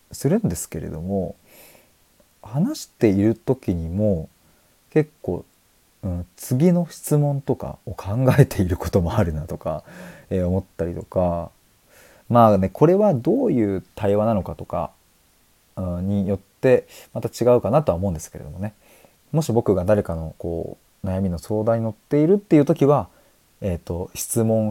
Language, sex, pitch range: Japanese, male, 85-115 Hz